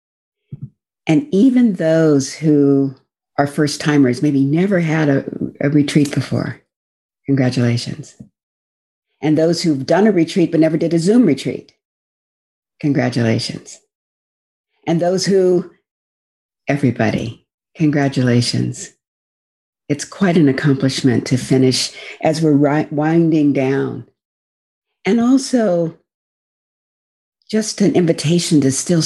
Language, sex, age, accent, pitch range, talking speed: English, female, 60-79, American, 135-170 Hz, 100 wpm